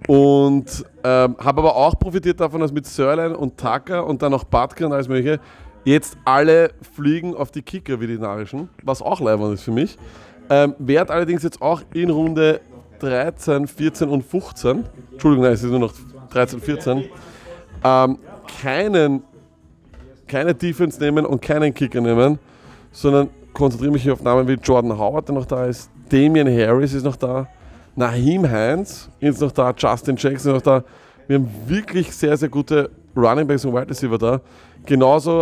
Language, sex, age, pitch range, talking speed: German, male, 30-49, 125-150 Hz, 175 wpm